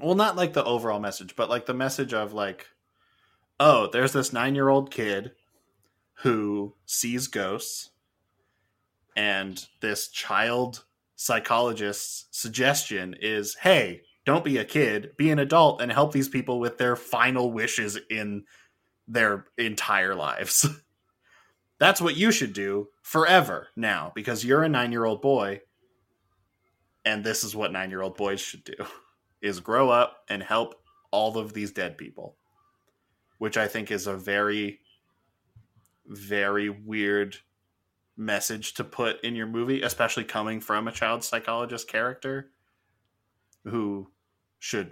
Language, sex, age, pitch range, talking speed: English, male, 20-39, 100-125 Hz, 130 wpm